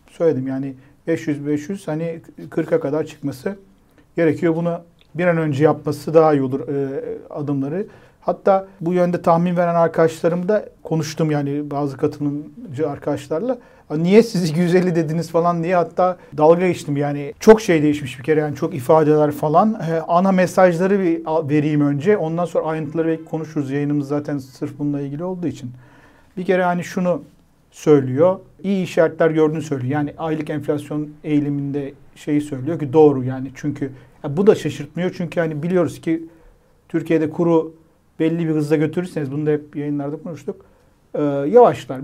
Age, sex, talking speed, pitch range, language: 50-69, male, 150 wpm, 145-175 Hz, Turkish